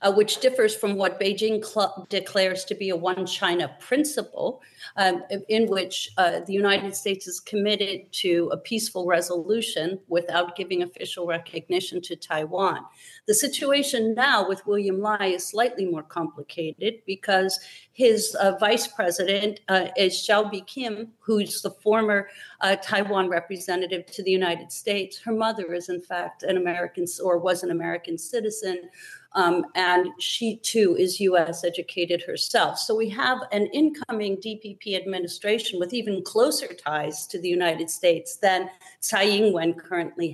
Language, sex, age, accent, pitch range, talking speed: English, female, 50-69, American, 180-225 Hz, 150 wpm